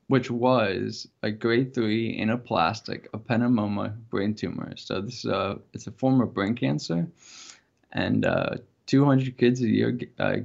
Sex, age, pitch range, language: male, 10-29, 105-125 Hz, English